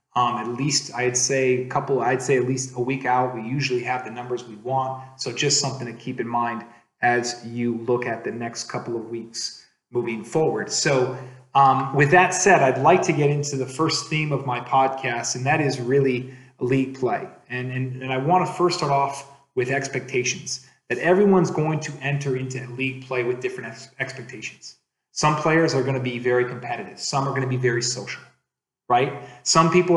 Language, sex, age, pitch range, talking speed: English, male, 30-49, 125-150 Hz, 200 wpm